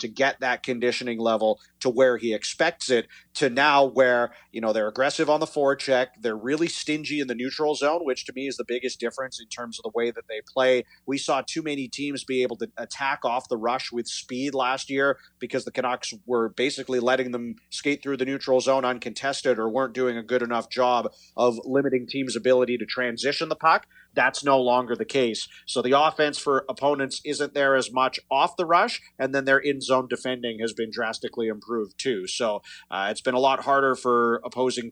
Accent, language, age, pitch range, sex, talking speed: American, English, 40-59, 120-140 Hz, male, 210 wpm